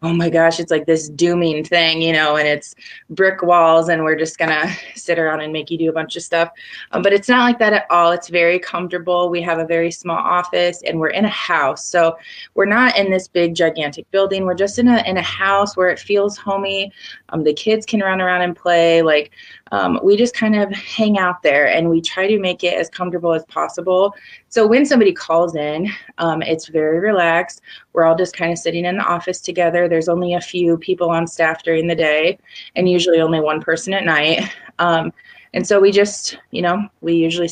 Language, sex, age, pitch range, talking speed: English, female, 20-39, 165-190 Hz, 225 wpm